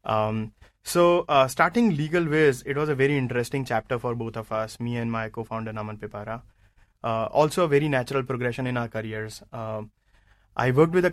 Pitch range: 110-135 Hz